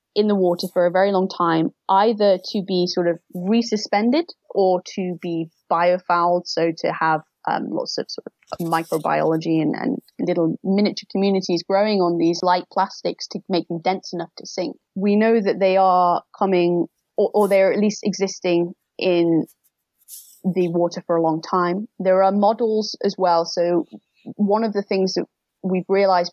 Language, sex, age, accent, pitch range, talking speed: English, female, 20-39, British, 175-200 Hz, 175 wpm